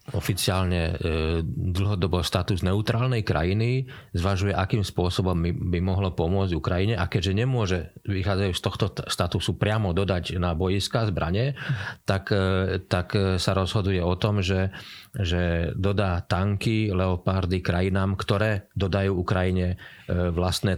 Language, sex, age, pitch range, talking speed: Slovak, male, 40-59, 95-115 Hz, 120 wpm